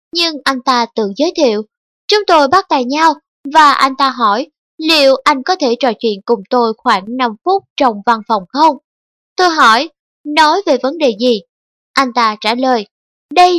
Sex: female